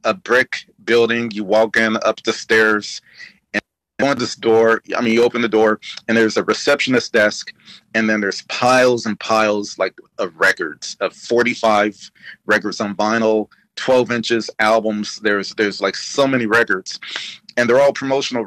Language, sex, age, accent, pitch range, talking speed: English, male, 40-59, American, 110-125 Hz, 160 wpm